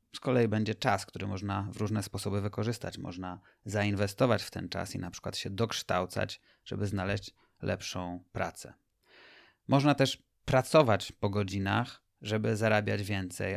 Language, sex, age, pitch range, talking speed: Polish, male, 30-49, 100-125 Hz, 140 wpm